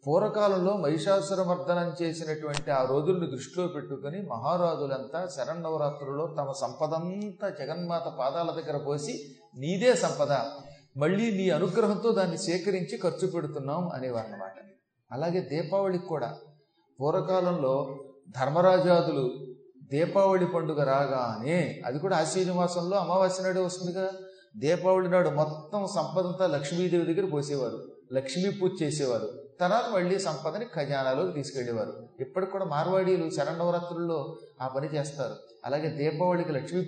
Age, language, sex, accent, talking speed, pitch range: 30-49, Telugu, male, native, 105 wpm, 145-185 Hz